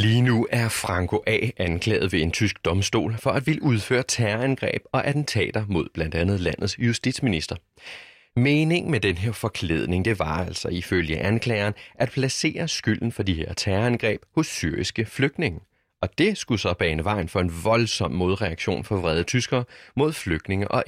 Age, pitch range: 30-49, 95-130 Hz